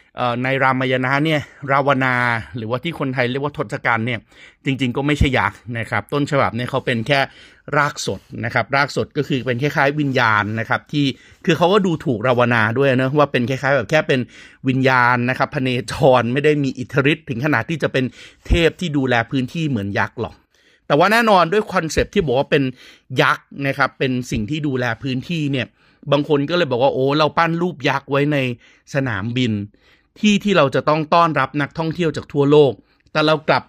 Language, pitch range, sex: Thai, 125-155 Hz, male